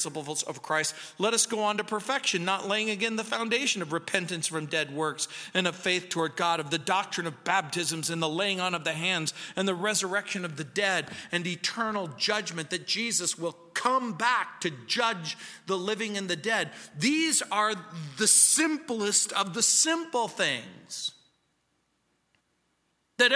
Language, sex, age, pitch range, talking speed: English, male, 50-69, 155-215 Hz, 165 wpm